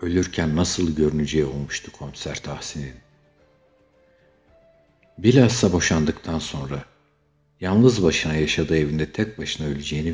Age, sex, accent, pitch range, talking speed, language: 60-79, male, native, 75-80 Hz, 95 wpm, Turkish